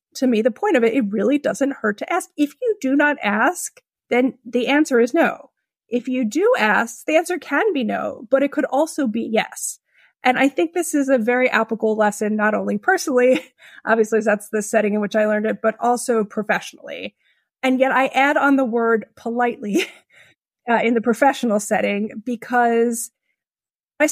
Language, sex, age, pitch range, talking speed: English, female, 30-49, 220-275 Hz, 190 wpm